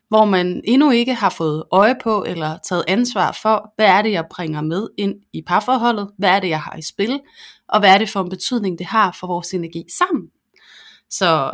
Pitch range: 185-235 Hz